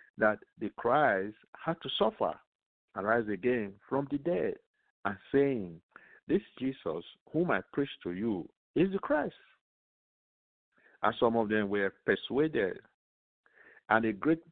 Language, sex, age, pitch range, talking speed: English, male, 50-69, 105-145 Hz, 135 wpm